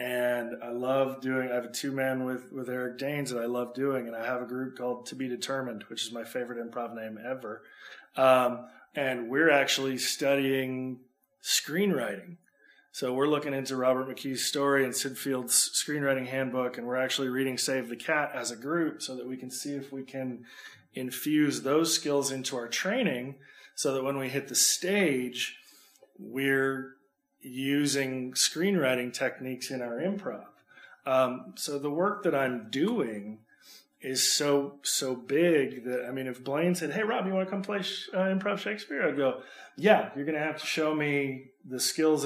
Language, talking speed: English, 180 wpm